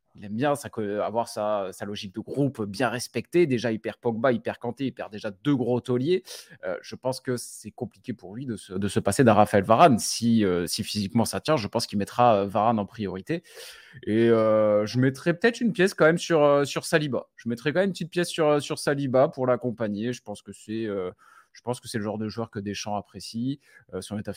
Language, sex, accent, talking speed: French, male, French, 235 wpm